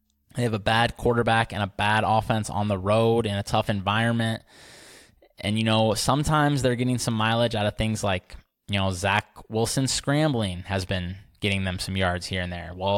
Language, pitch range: English, 100-115 Hz